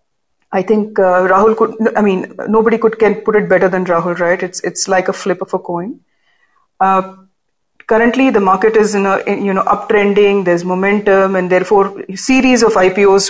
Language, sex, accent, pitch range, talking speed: English, female, Indian, 185-220 Hz, 195 wpm